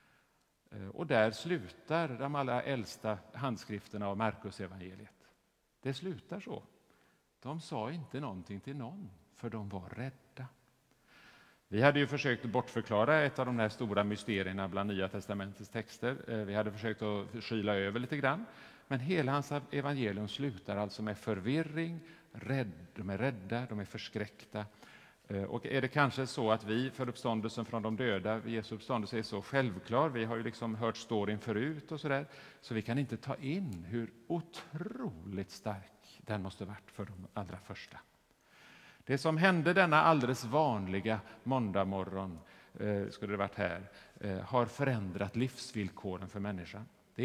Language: Swedish